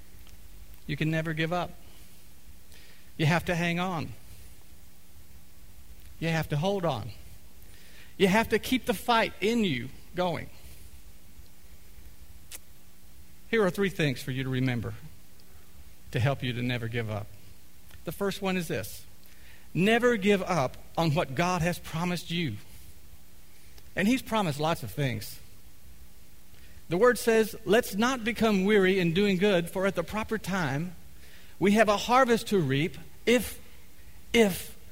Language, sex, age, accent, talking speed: English, male, 50-69, American, 140 wpm